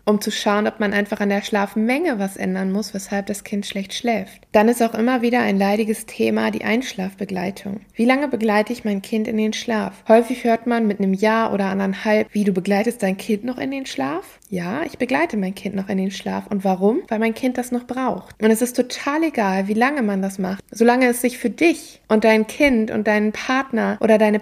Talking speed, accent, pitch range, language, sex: 230 wpm, German, 205-240 Hz, German, female